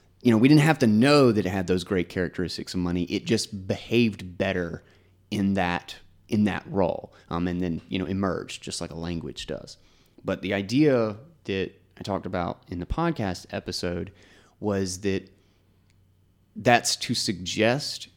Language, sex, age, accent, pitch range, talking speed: English, male, 30-49, American, 90-115 Hz, 170 wpm